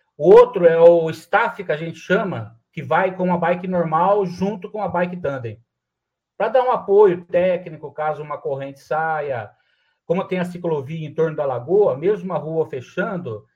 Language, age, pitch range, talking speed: Portuguese, 50-69, 155-200 Hz, 180 wpm